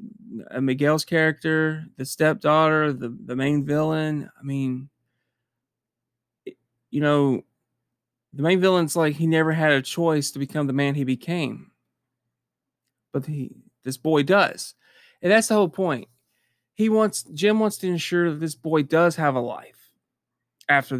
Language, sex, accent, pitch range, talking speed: English, male, American, 130-165 Hz, 145 wpm